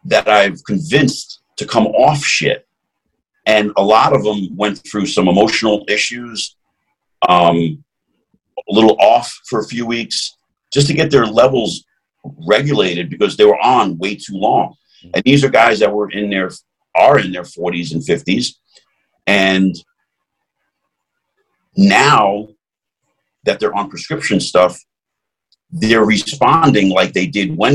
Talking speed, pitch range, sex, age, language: 140 wpm, 95-140 Hz, male, 50-69, English